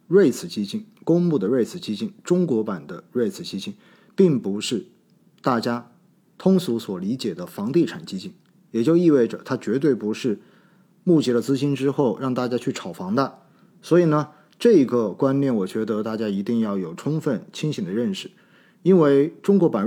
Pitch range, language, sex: 120-185 Hz, Chinese, male